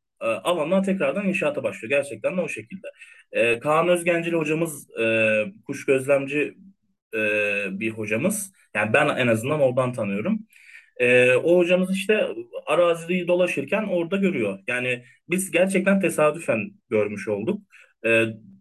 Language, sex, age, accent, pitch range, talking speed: Turkish, male, 30-49, native, 125-190 Hz, 125 wpm